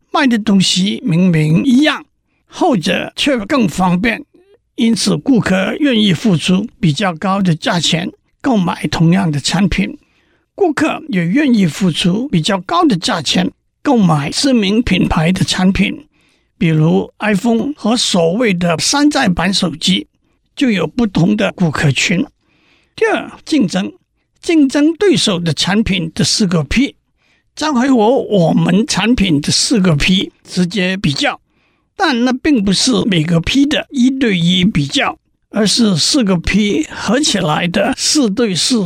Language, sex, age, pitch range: Chinese, male, 50-69, 175-250 Hz